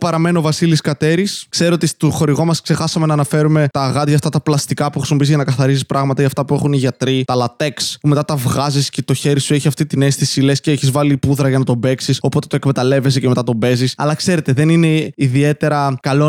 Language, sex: Greek, male